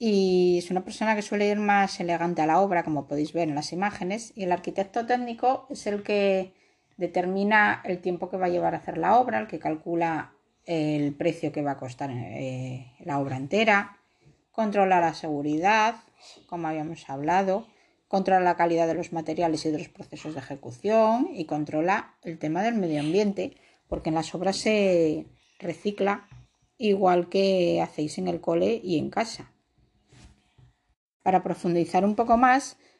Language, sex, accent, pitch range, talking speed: Spanish, female, Spanish, 165-205 Hz, 170 wpm